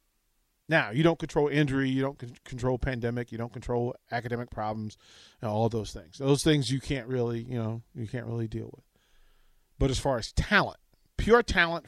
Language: English